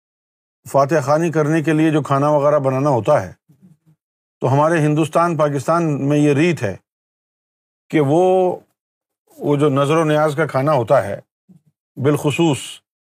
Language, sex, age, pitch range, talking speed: Urdu, male, 50-69, 140-170 Hz, 140 wpm